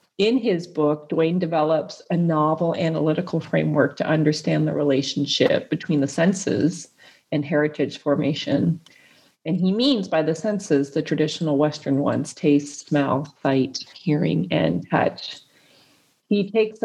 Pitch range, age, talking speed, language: 150-175 Hz, 40-59, 130 wpm, English